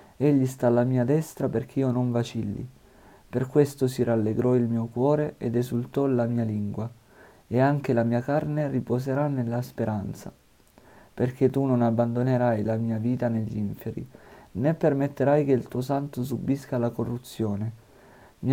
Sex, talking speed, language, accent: male, 155 wpm, Italian, native